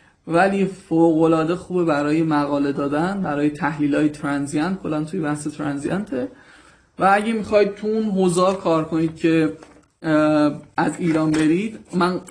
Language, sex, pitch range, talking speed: Persian, male, 155-190 Hz, 125 wpm